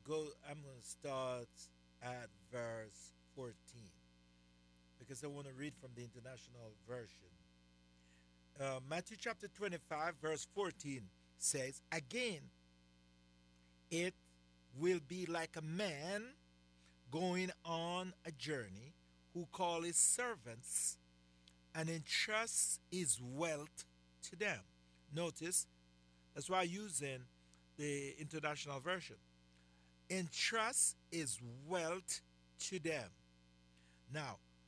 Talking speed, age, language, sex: 105 wpm, 50-69, English, male